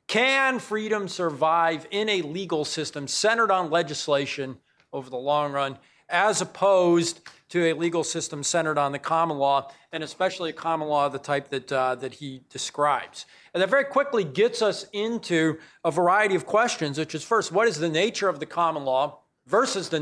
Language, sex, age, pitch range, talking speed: English, male, 40-59, 145-195 Hz, 185 wpm